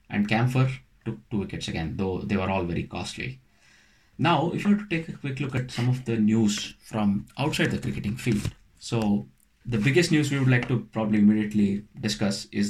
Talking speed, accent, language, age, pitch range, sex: 205 wpm, Indian, English, 20-39, 100-120 Hz, male